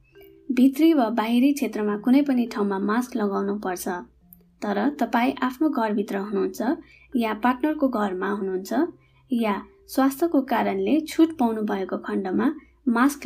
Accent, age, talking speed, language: Indian, 20-39, 125 wpm, English